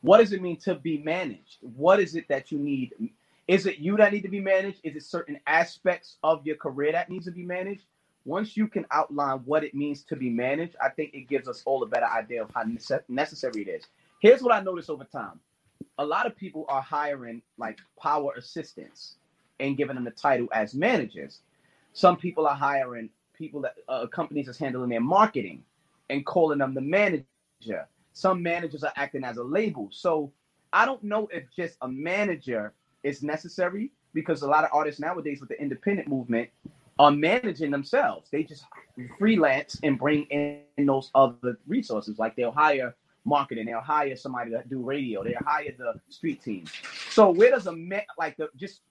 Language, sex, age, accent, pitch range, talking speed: English, male, 30-49, American, 140-185 Hz, 195 wpm